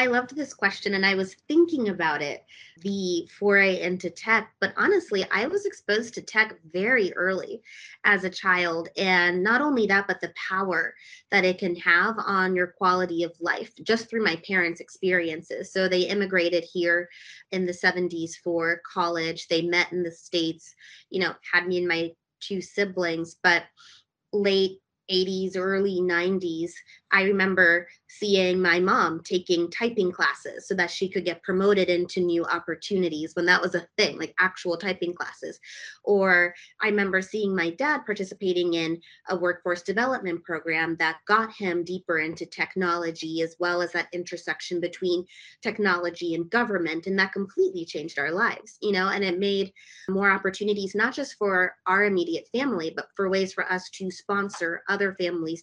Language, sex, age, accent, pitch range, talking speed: English, female, 20-39, American, 170-200 Hz, 165 wpm